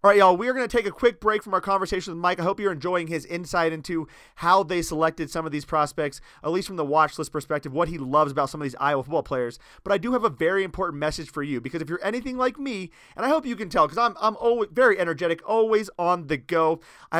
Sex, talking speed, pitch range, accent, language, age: male, 280 wpm, 165-215 Hz, American, English, 30-49